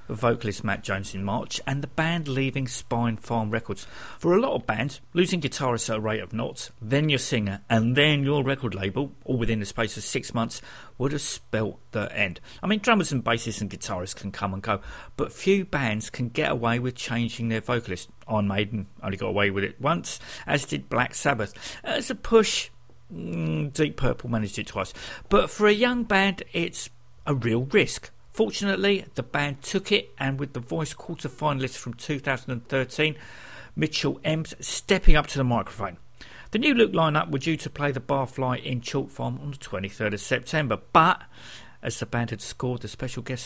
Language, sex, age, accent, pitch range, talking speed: English, male, 50-69, British, 110-155 Hz, 195 wpm